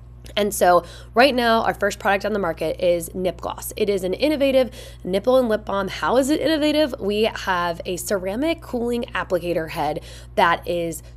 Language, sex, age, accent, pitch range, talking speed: English, female, 10-29, American, 180-235 Hz, 185 wpm